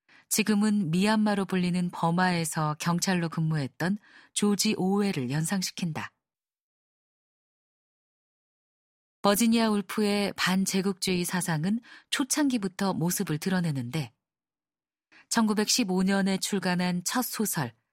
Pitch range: 160-215 Hz